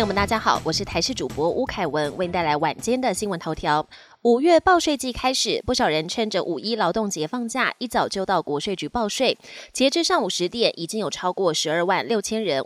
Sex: female